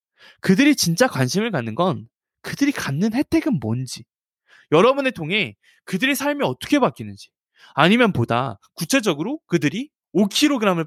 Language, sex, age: Korean, male, 20-39